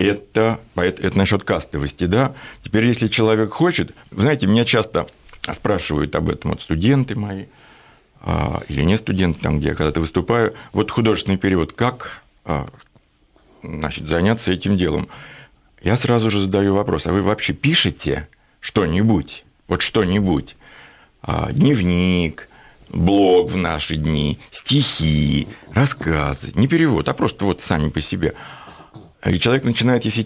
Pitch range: 85-110 Hz